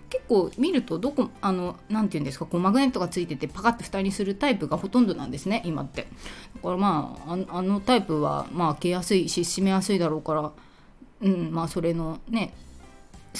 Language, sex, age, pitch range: Japanese, female, 20-39, 165-235 Hz